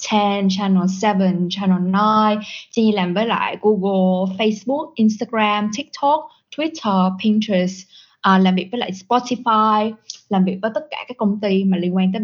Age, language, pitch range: 10-29, Vietnamese, 185-215 Hz